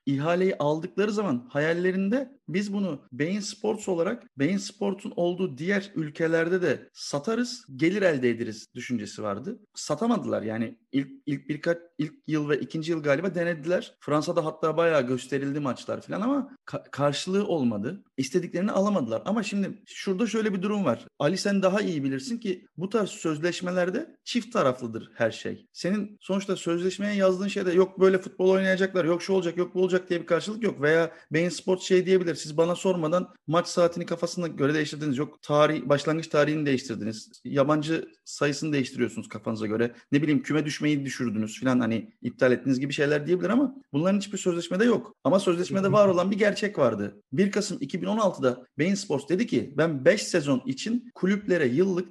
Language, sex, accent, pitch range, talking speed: Turkish, male, native, 150-200 Hz, 165 wpm